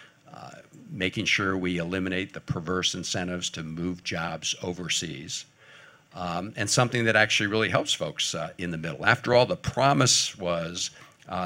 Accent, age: American, 60-79